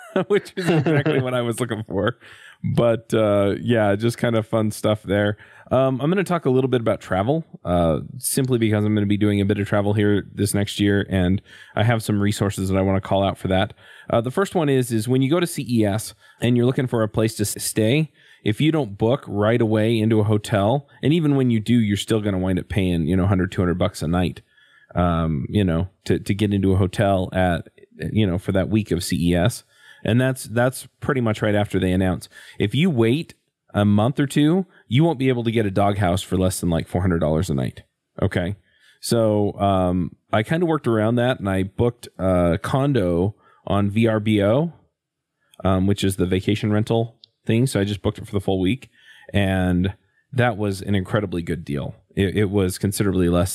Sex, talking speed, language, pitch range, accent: male, 220 wpm, English, 95-120 Hz, American